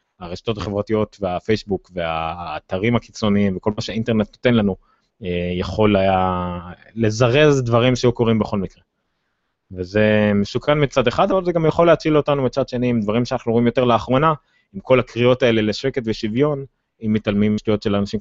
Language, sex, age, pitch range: Hebrew, male, 20-39, 95-120 Hz